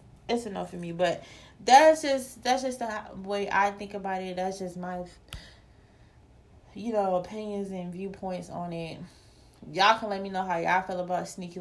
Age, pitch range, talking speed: 20-39, 180-215 Hz, 180 wpm